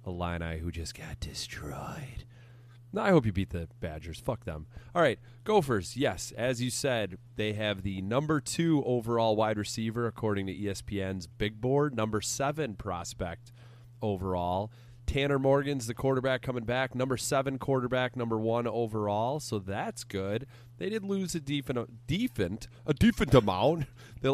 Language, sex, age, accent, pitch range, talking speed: English, male, 30-49, American, 105-125 Hz, 150 wpm